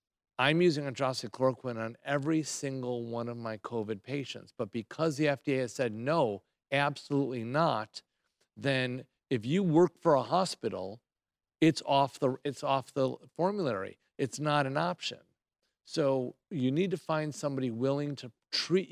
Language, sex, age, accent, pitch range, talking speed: English, male, 50-69, American, 125-150 Hz, 145 wpm